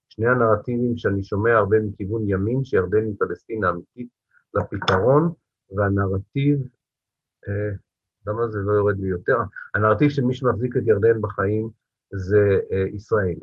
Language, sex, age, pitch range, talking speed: Hebrew, male, 50-69, 100-125 Hz, 125 wpm